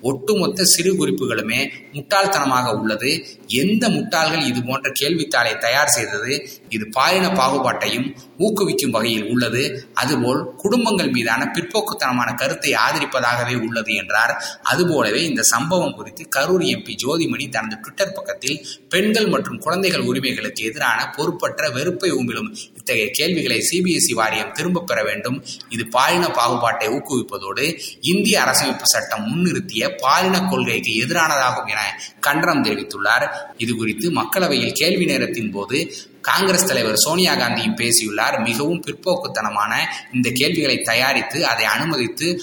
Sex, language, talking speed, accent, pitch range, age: male, Tamil, 100 wpm, native, 120-185 Hz, 20-39